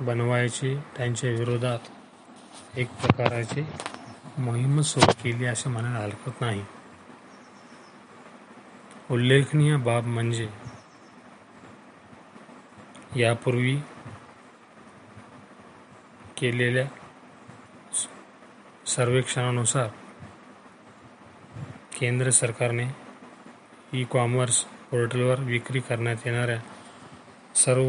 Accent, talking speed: native, 55 wpm